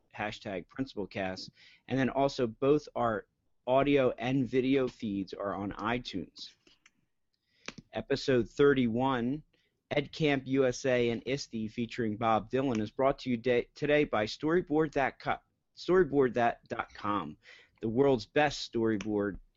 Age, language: 40-59, English